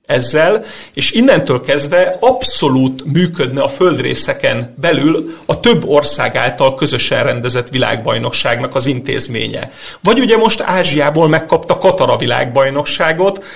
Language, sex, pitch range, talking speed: Hungarian, male, 145-195 Hz, 110 wpm